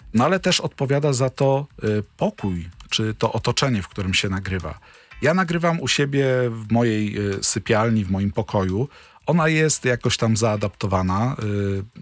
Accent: native